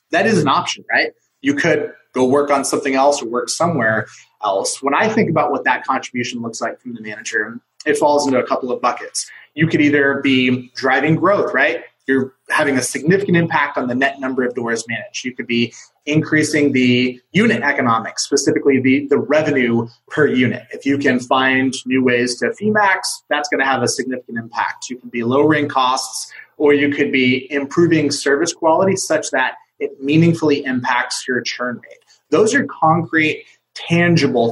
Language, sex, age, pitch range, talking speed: English, male, 30-49, 125-150 Hz, 185 wpm